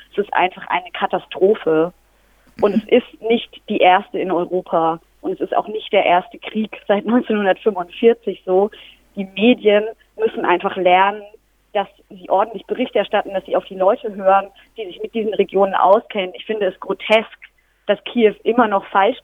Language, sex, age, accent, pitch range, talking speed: German, female, 30-49, German, 195-230 Hz, 170 wpm